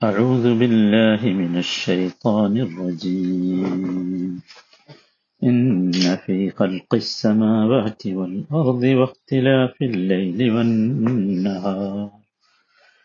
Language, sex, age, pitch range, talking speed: Malayalam, male, 50-69, 105-140 Hz, 60 wpm